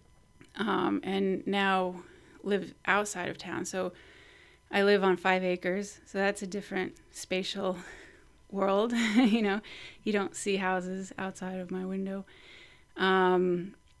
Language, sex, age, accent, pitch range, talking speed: English, female, 30-49, American, 180-195 Hz, 130 wpm